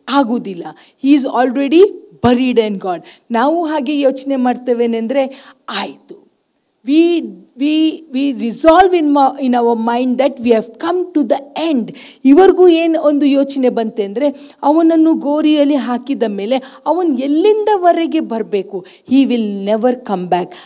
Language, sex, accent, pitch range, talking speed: Kannada, female, native, 200-280 Hz, 135 wpm